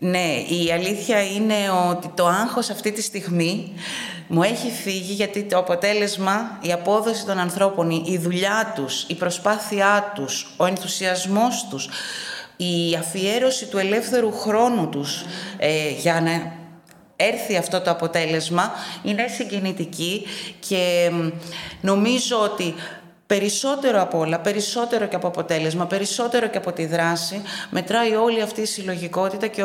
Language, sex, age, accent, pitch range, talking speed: Greek, female, 30-49, native, 175-235 Hz, 130 wpm